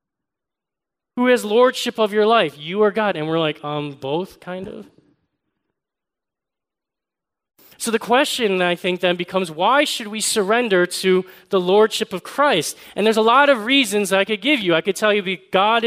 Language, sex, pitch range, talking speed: English, male, 190-235 Hz, 180 wpm